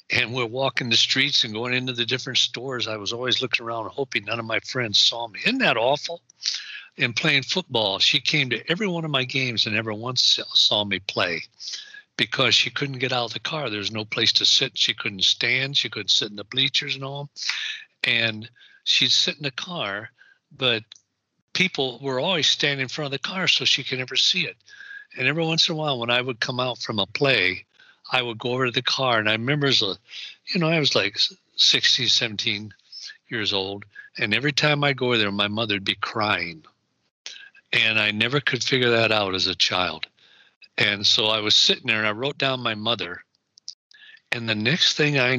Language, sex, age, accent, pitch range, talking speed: English, male, 60-79, American, 110-140 Hz, 215 wpm